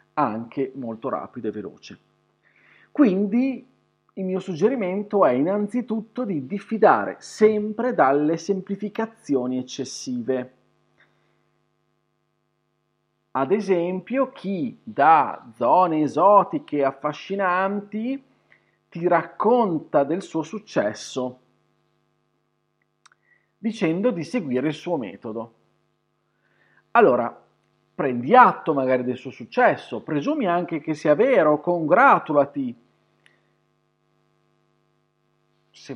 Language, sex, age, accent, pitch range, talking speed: Italian, male, 40-59, native, 135-205 Hz, 80 wpm